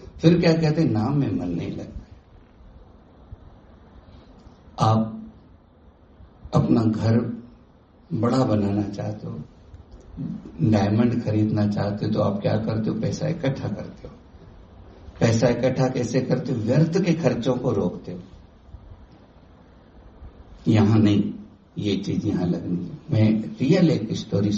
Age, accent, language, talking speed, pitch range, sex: 60-79, native, Hindi, 120 wpm, 100-125 Hz, male